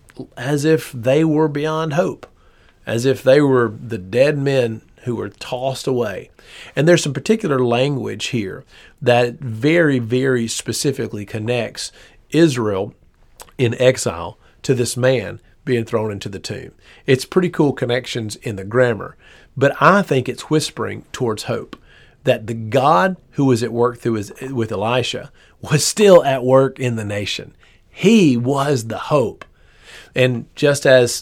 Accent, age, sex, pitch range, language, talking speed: American, 40-59, male, 115-135 Hz, English, 150 wpm